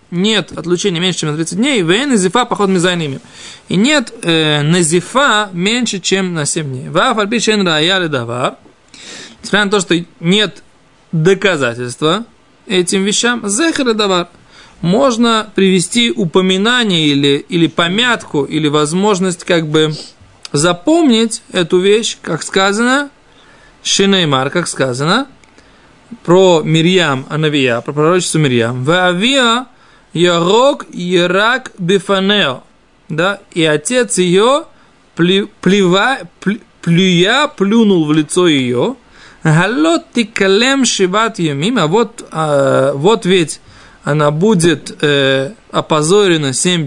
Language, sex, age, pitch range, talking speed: Russian, male, 20-39, 160-215 Hz, 110 wpm